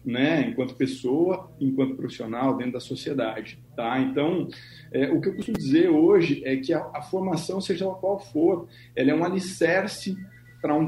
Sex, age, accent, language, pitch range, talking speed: male, 40-59, Brazilian, Portuguese, 130-185 Hz, 175 wpm